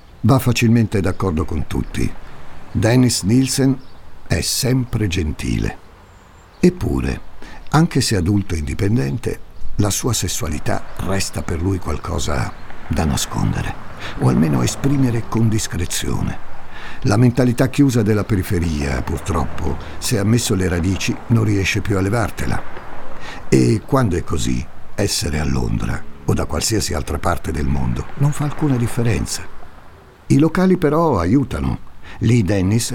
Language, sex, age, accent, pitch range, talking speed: Italian, male, 60-79, native, 85-120 Hz, 125 wpm